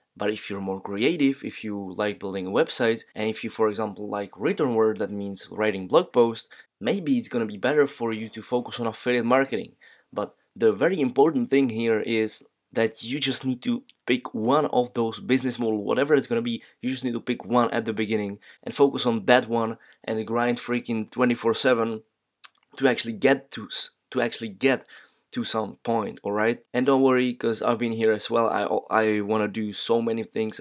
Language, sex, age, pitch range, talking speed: English, male, 20-39, 110-125 Hz, 200 wpm